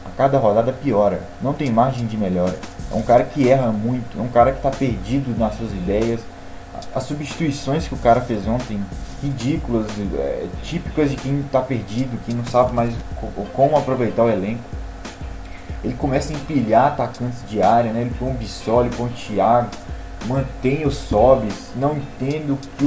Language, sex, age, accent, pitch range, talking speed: Portuguese, male, 20-39, Brazilian, 110-135 Hz, 175 wpm